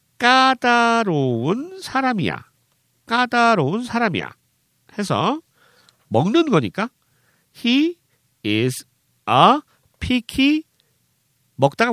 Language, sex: Korean, male